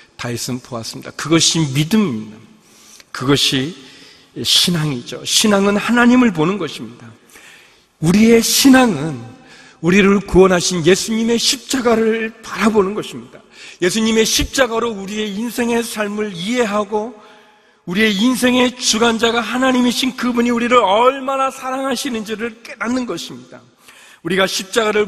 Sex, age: male, 40-59